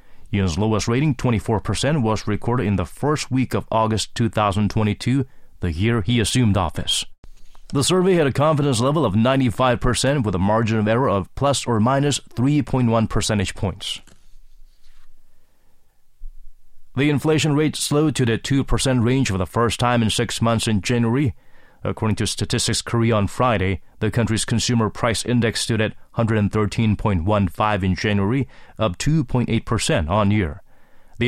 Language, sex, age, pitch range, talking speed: English, male, 30-49, 105-125 Hz, 145 wpm